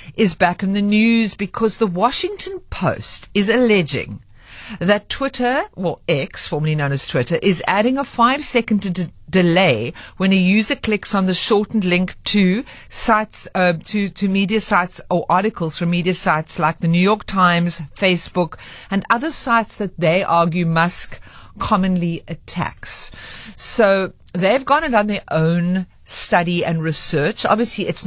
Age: 50-69